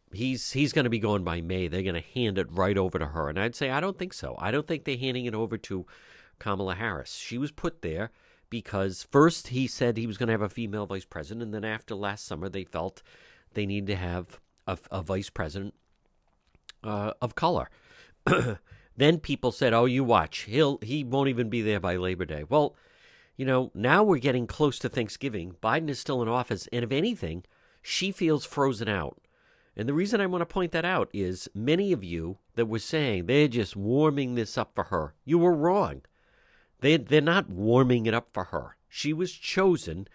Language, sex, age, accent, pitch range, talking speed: English, male, 50-69, American, 100-150 Hz, 210 wpm